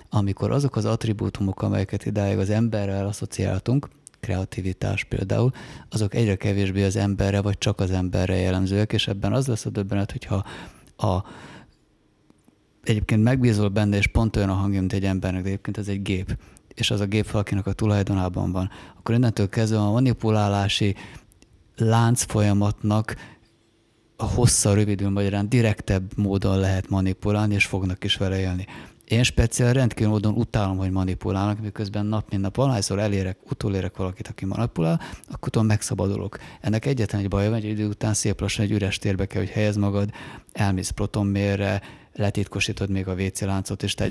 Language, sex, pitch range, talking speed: Hungarian, male, 95-110 Hz, 160 wpm